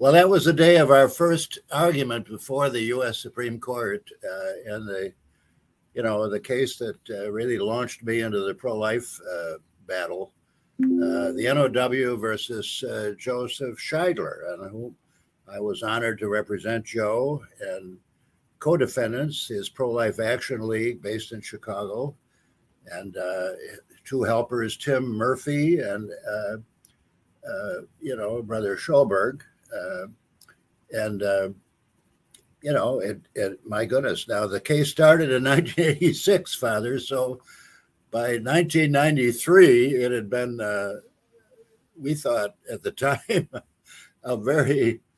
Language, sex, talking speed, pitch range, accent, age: English, male, 125 wpm, 105-145 Hz, American, 60-79